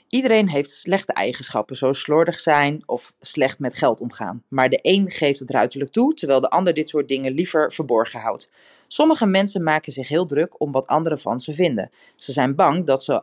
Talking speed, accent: 205 wpm, Dutch